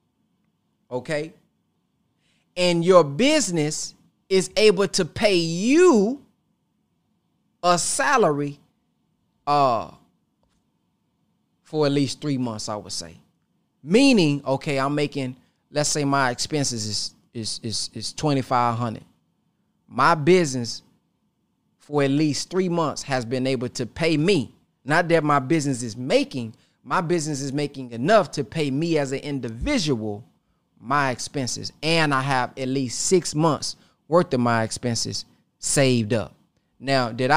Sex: male